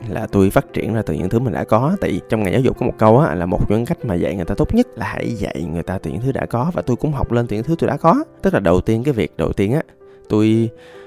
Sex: male